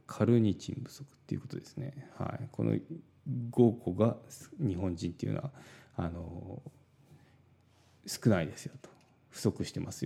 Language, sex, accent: Japanese, male, native